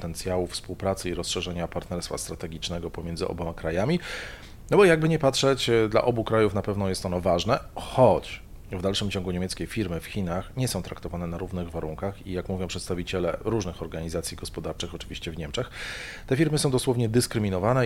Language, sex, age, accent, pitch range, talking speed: Polish, male, 40-59, native, 90-115 Hz, 170 wpm